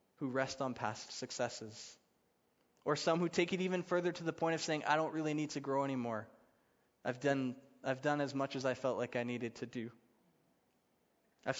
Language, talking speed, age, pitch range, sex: English, 200 wpm, 20-39, 130-165 Hz, male